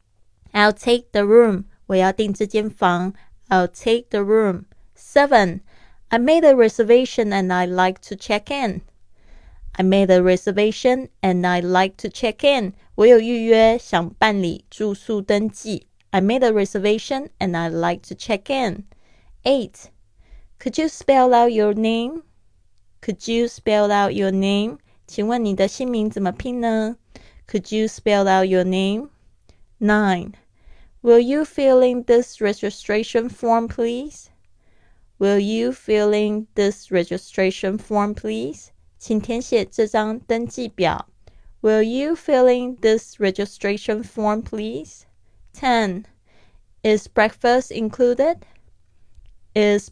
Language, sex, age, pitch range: Chinese, female, 20-39, 185-235 Hz